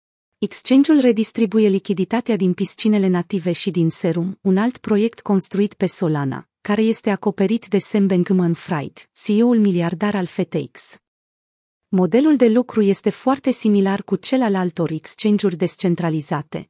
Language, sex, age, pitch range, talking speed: Romanian, female, 30-49, 180-220 Hz, 135 wpm